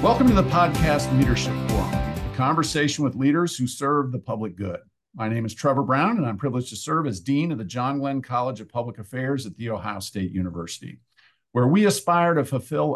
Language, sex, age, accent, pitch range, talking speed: English, male, 50-69, American, 110-150 Hz, 210 wpm